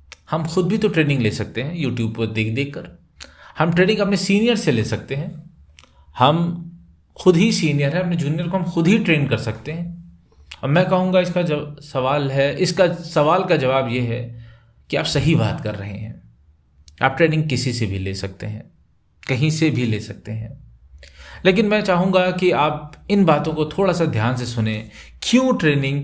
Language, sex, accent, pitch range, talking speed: Hindi, male, native, 110-180 Hz, 200 wpm